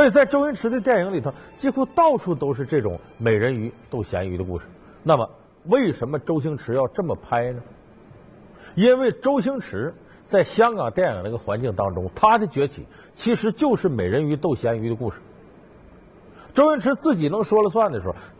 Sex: male